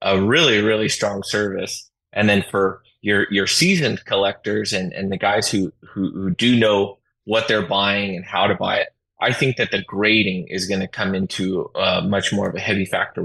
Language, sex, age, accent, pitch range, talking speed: English, male, 20-39, American, 100-115 Hz, 210 wpm